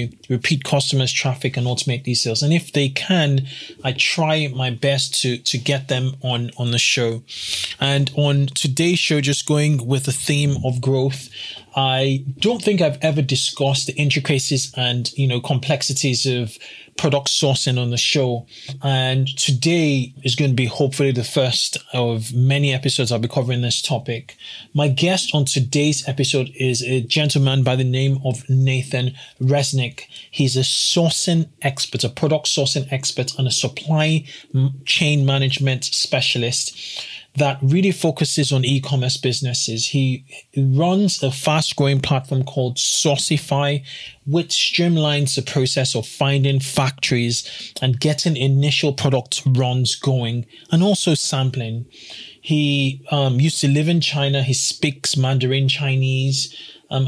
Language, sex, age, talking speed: English, male, 20-39, 145 wpm